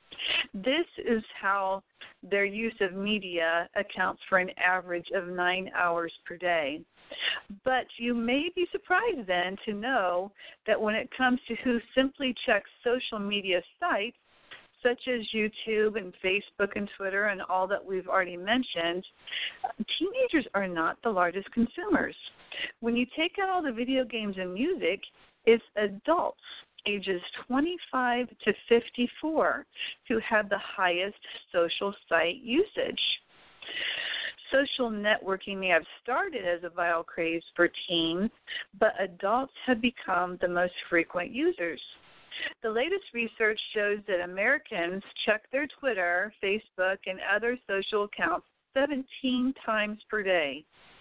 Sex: female